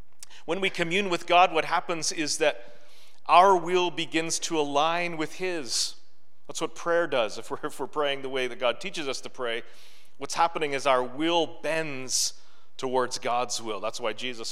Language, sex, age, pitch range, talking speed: English, male, 40-59, 130-170 Hz, 180 wpm